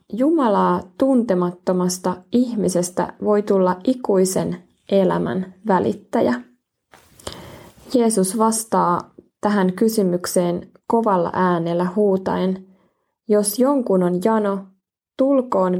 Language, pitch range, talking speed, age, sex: Finnish, 185-215 Hz, 75 wpm, 20-39, female